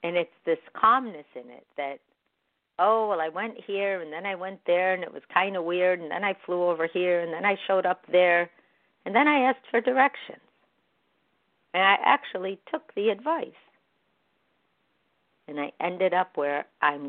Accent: American